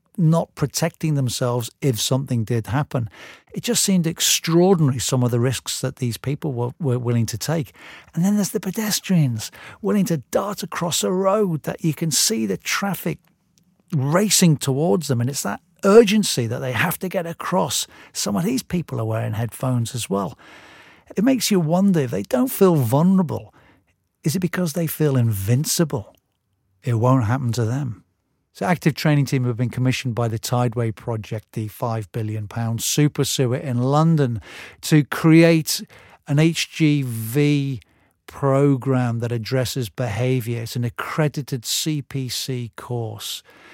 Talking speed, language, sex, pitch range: 155 wpm, English, male, 120-165 Hz